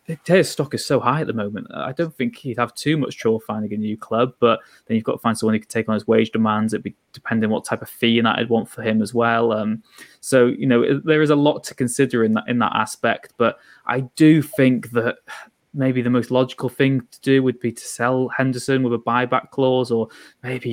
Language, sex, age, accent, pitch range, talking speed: English, male, 20-39, British, 110-125 Hz, 250 wpm